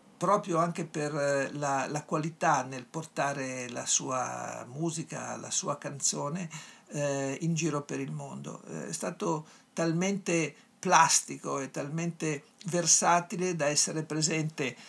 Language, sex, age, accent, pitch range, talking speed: Italian, male, 60-79, native, 145-175 Hz, 125 wpm